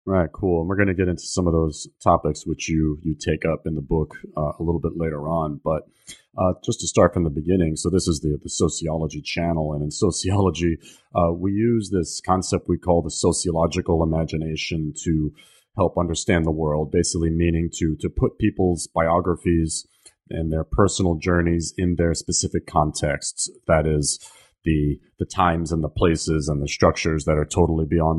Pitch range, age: 80-90 Hz, 30-49